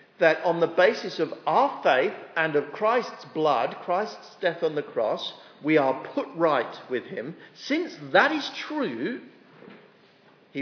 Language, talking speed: English, 155 wpm